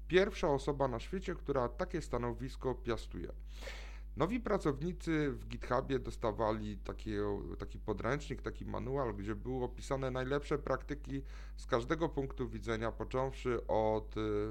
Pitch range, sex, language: 105-140 Hz, male, Polish